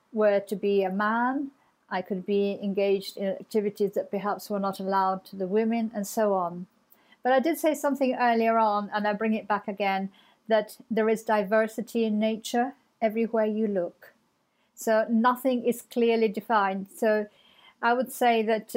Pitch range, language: 200-230 Hz, English